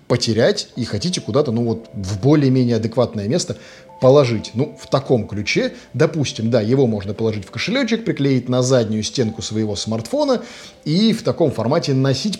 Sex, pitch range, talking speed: male, 115-150 Hz, 160 wpm